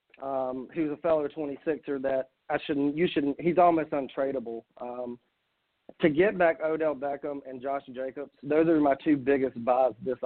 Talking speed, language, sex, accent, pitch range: 185 wpm, English, male, American, 125-145 Hz